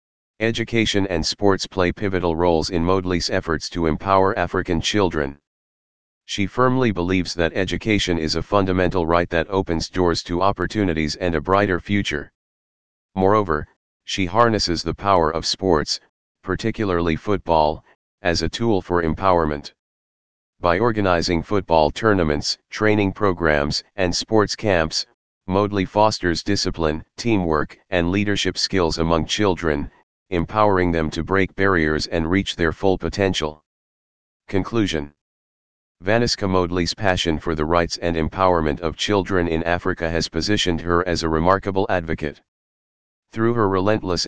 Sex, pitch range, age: male, 80-100 Hz, 40-59